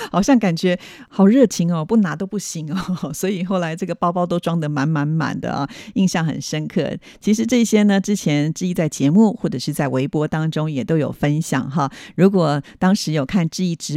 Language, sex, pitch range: Chinese, female, 155-205 Hz